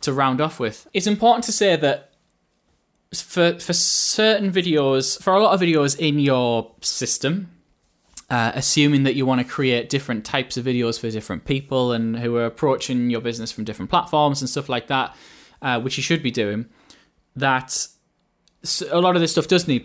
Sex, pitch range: male, 115-150 Hz